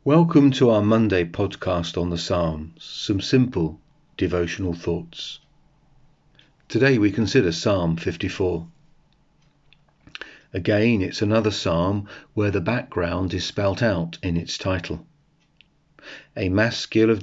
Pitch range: 90-135 Hz